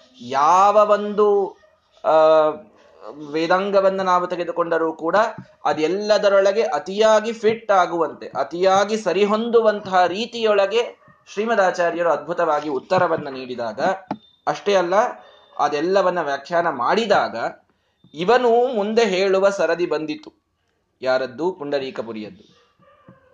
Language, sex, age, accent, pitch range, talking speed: Kannada, male, 20-39, native, 160-210 Hz, 75 wpm